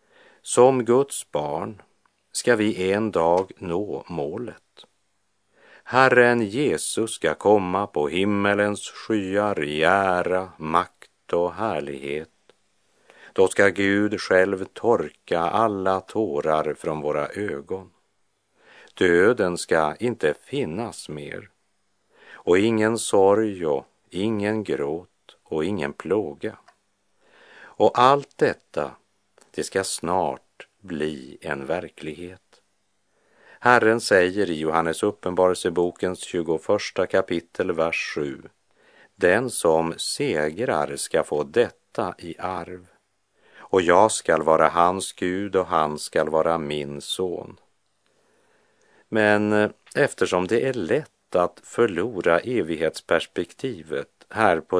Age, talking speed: 50-69, 100 wpm